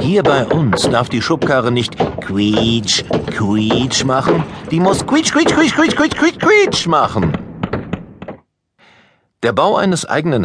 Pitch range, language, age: 95-135 Hz, German, 50-69